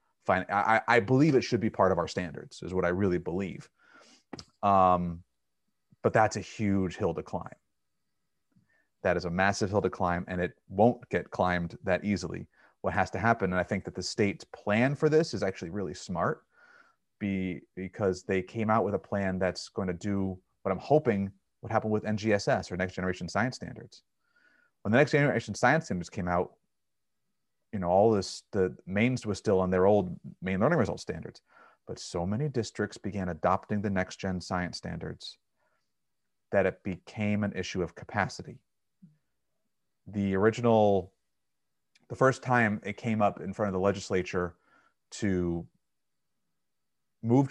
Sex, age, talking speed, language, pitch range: male, 30-49, 170 wpm, English, 90-110 Hz